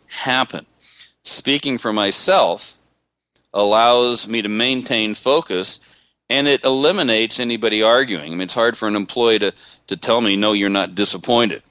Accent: American